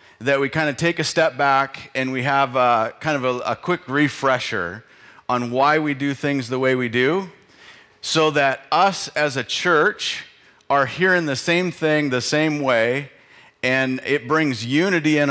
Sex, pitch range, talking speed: male, 125-150 Hz, 175 wpm